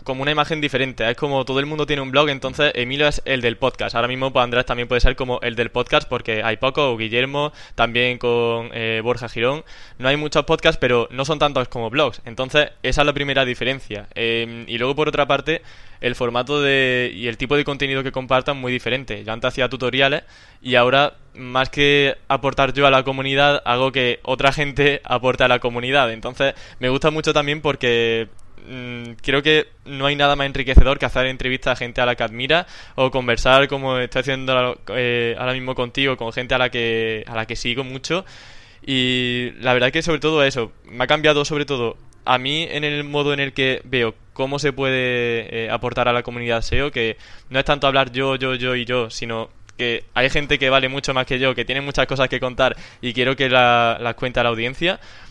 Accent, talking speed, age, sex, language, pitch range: Spanish, 215 wpm, 10-29, male, Spanish, 120-140 Hz